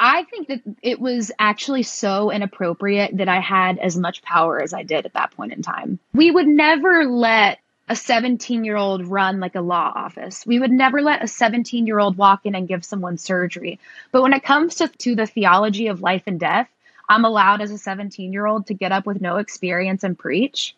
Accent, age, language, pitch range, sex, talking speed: American, 20-39, English, 195-255 Hz, female, 200 wpm